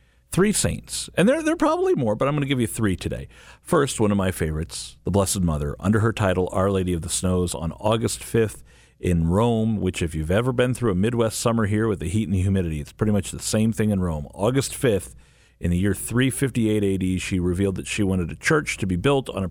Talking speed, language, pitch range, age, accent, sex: 245 wpm, English, 90-115 Hz, 50-69, American, male